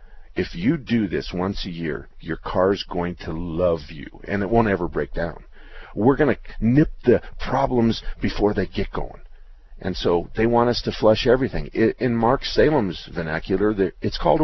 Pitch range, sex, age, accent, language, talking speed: 90-110 Hz, male, 50-69, American, English, 180 wpm